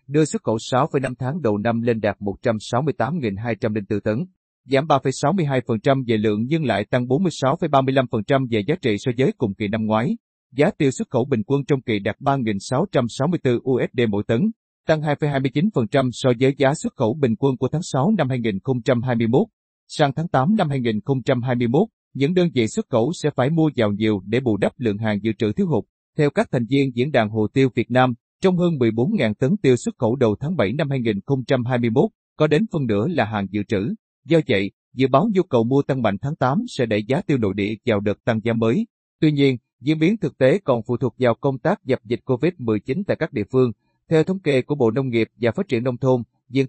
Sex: male